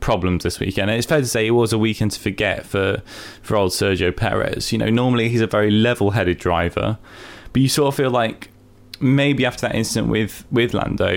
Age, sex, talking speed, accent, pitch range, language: 10-29, male, 215 wpm, British, 100-120 Hz, English